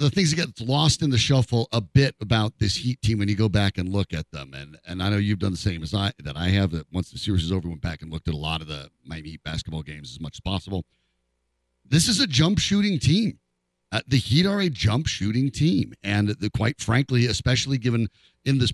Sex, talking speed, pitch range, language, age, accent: male, 255 wpm, 95-145 Hz, English, 50-69, American